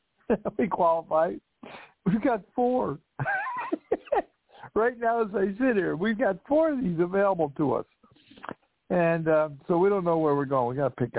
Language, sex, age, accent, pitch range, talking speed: English, male, 60-79, American, 130-175 Hz, 170 wpm